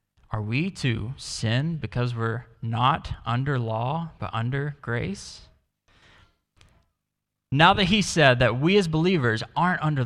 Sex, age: male, 20-39